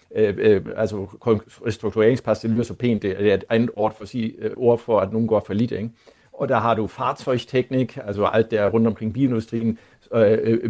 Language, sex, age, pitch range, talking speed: Danish, male, 50-69, 110-125 Hz, 170 wpm